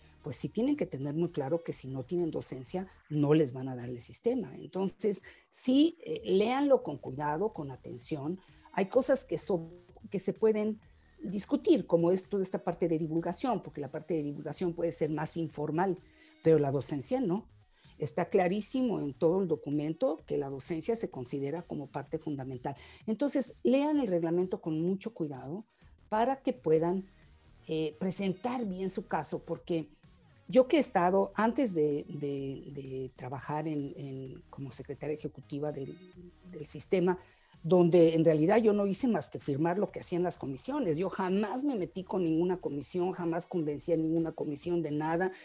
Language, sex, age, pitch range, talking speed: Spanish, female, 50-69, 150-200 Hz, 170 wpm